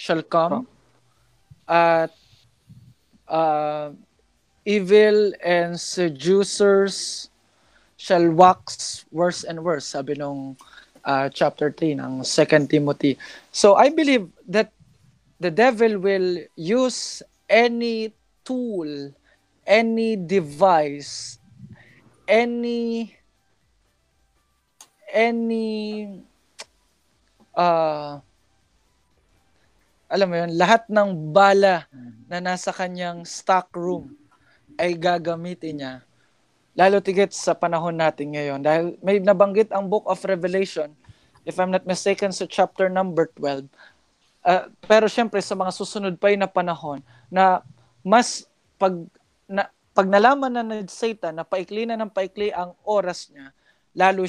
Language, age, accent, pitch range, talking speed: Filipino, 20-39, native, 150-200 Hz, 105 wpm